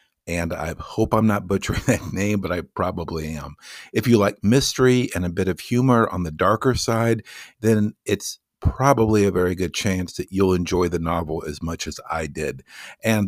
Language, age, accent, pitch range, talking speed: English, 50-69, American, 85-110 Hz, 195 wpm